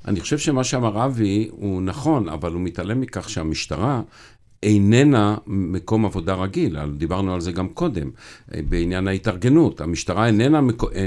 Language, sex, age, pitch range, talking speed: Hebrew, male, 50-69, 95-125 Hz, 140 wpm